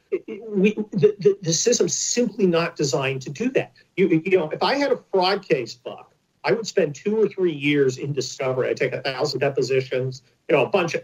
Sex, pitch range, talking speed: male, 145-230 Hz, 215 wpm